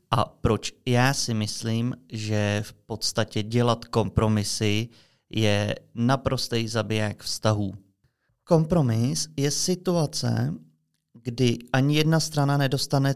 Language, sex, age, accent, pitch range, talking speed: Czech, male, 30-49, native, 115-140 Hz, 100 wpm